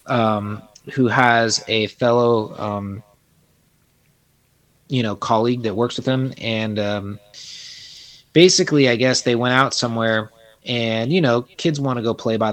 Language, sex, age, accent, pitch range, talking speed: English, male, 30-49, American, 110-140 Hz, 150 wpm